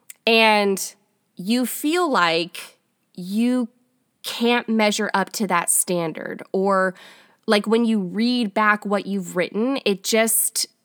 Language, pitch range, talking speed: English, 190-235 Hz, 120 wpm